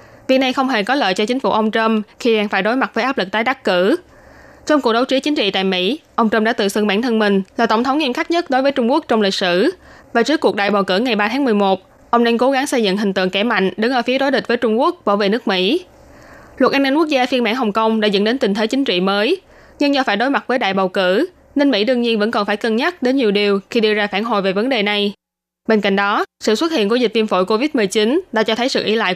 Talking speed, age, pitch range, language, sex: 305 wpm, 20-39, 205-255 Hz, Vietnamese, female